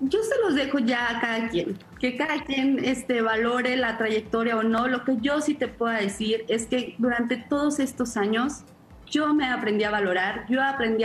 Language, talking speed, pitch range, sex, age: Spanish, 195 wpm, 210-245 Hz, female, 30-49